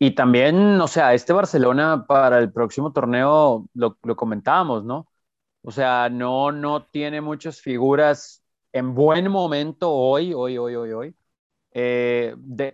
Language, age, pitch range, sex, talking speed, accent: Spanish, 30-49, 125-165 Hz, male, 145 wpm, Mexican